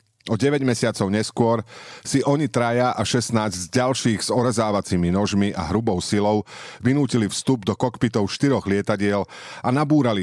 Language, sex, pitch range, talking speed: Slovak, male, 95-125 Hz, 145 wpm